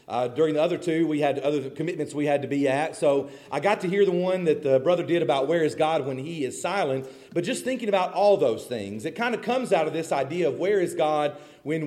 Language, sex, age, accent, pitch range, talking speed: English, male, 40-59, American, 150-195 Hz, 270 wpm